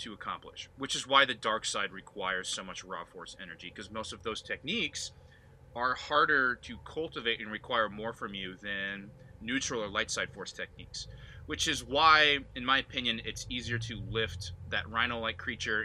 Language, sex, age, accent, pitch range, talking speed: English, male, 20-39, American, 100-125 Hz, 180 wpm